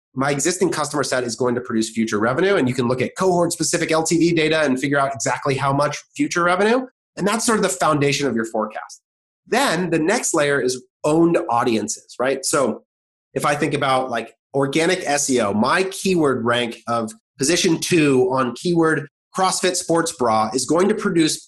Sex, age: male, 30-49